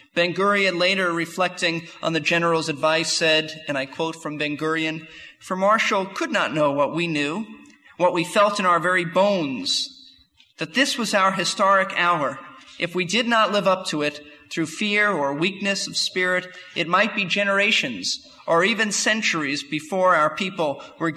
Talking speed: 165 wpm